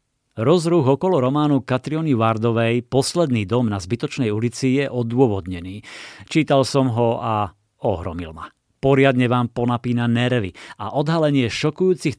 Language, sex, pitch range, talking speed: Slovak, male, 110-135 Hz, 125 wpm